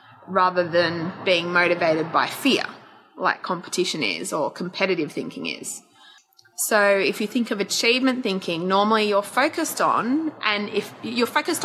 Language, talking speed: English, 145 wpm